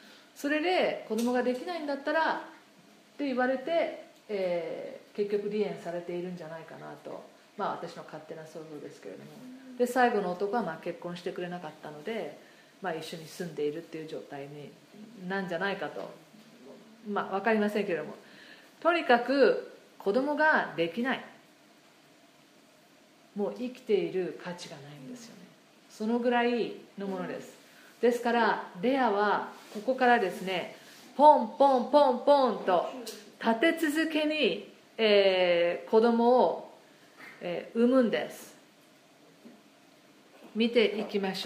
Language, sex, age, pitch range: Japanese, female, 40-59, 195-260 Hz